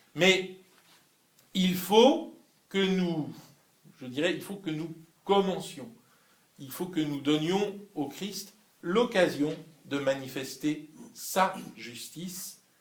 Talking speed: 110 wpm